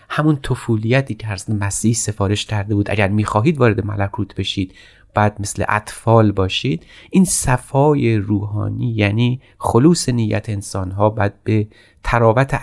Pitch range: 105-125 Hz